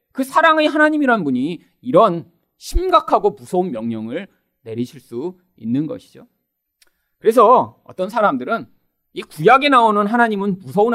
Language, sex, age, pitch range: Korean, male, 40-59, 180-280 Hz